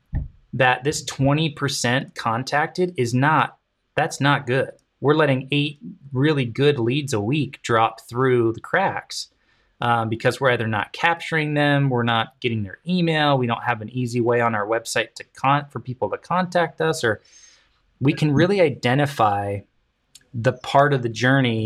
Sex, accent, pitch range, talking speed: male, American, 115-145 Hz, 165 wpm